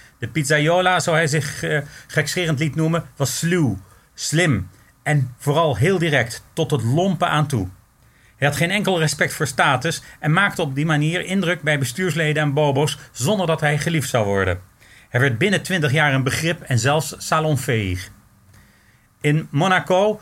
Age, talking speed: 40-59, 165 wpm